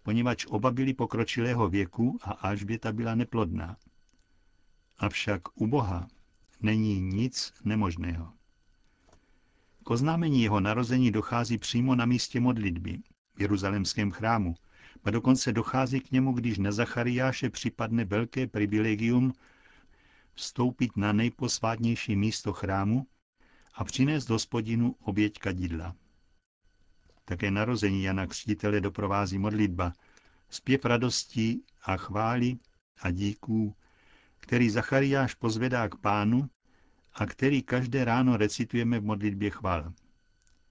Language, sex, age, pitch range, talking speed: Czech, male, 60-79, 100-120 Hz, 110 wpm